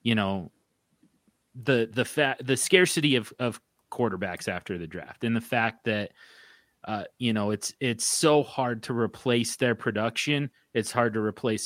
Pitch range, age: 110-135 Hz, 30-49